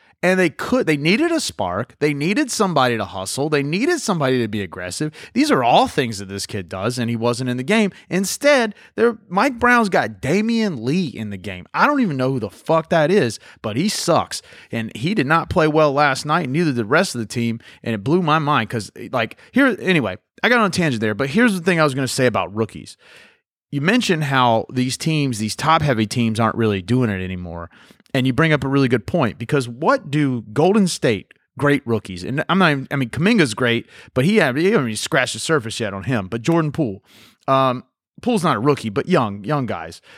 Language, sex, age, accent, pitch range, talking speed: English, male, 30-49, American, 115-170 Hz, 235 wpm